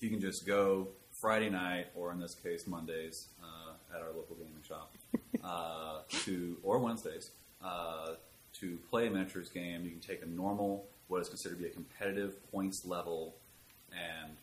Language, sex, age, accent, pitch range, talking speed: English, male, 30-49, American, 80-95 Hz, 175 wpm